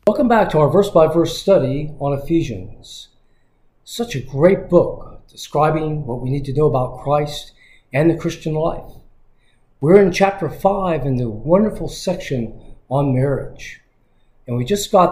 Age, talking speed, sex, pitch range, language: 40-59, 150 wpm, male, 130-175 Hz, English